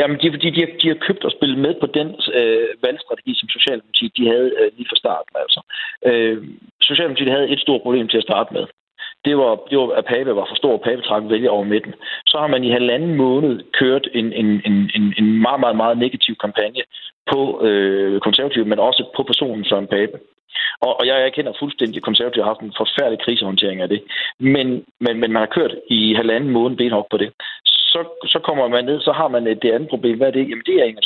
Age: 40-59